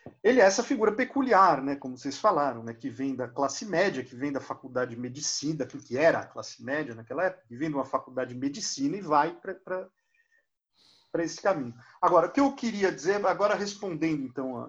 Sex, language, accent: male, Portuguese, Brazilian